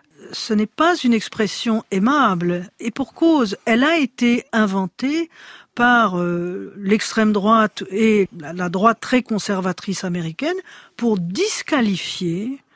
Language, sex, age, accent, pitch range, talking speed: French, female, 50-69, French, 190-250 Hz, 120 wpm